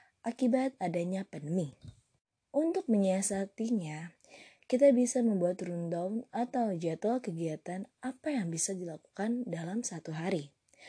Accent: native